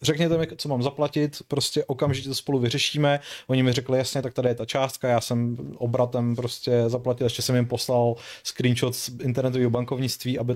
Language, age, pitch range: Czech, 30-49, 120-145 Hz